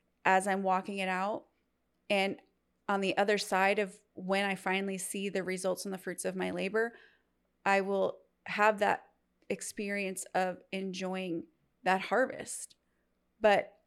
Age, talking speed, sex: 30-49, 145 wpm, female